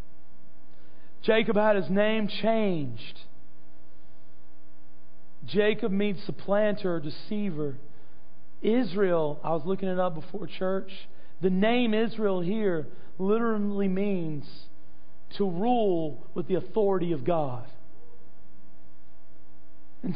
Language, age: English, 40-59